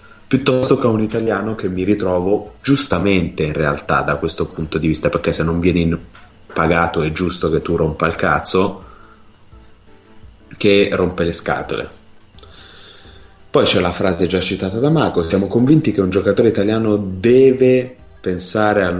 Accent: native